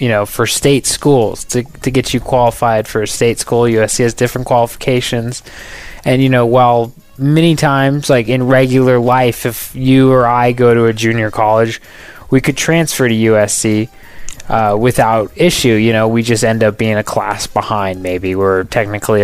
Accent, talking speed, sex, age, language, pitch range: American, 180 wpm, male, 20-39, English, 105-125 Hz